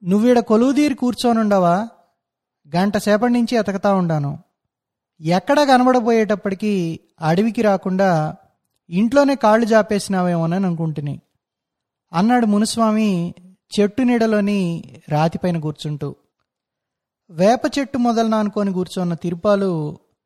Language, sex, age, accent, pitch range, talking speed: Telugu, male, 20-39, native, 175-235 Hz, 75 wpm